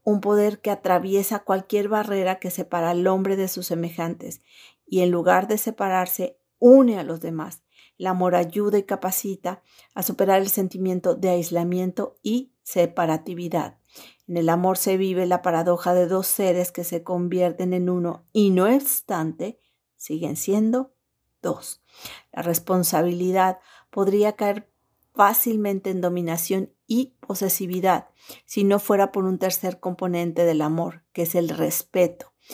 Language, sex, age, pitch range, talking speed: Spanish, female, 40-59, 175-200 Hz, 145 wpm